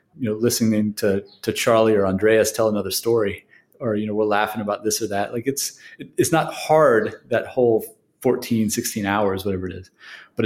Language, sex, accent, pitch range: English, male, American, 105-130 Hz